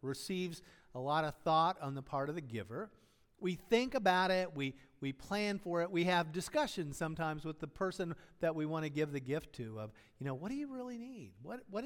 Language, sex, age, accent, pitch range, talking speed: English, male, 50-69, American, 120-175 Hz, 230 wpm